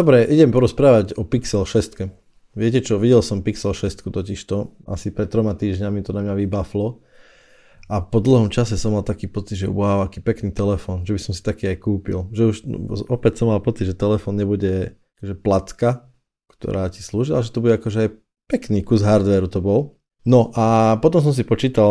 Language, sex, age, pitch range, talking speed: Slovak, male, 20-39, 95-110 Hz, 200 wpm